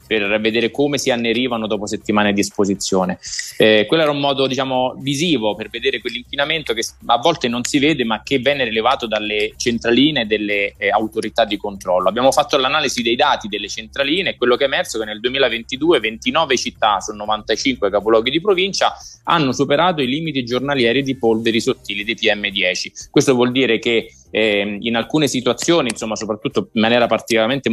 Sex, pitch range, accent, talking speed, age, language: male, 105-135 Hz, native, 175 wpm, 20-39, Italian